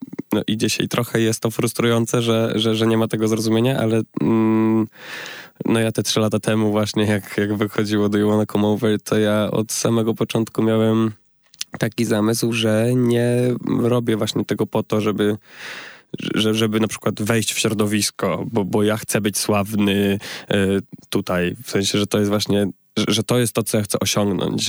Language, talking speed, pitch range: Polish, 175 wpm, 105-110 Hz